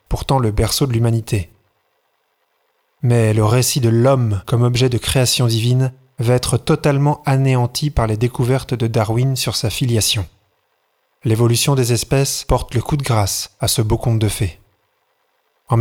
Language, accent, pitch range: French, French, 115-140 Hz